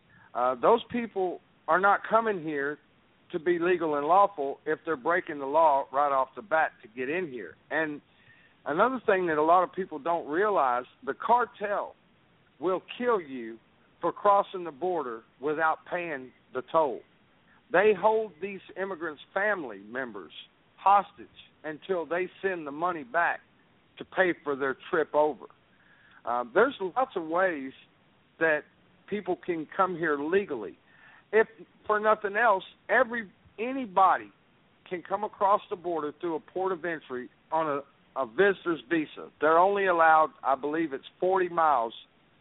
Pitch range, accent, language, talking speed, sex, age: 150-200 Hz, American, English, 150 wpm, male, 50-69